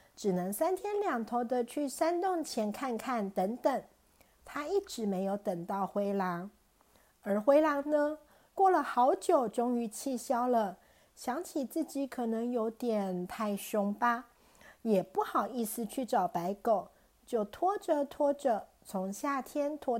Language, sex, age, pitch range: Chinese, female, 50-69, 215-300 Hz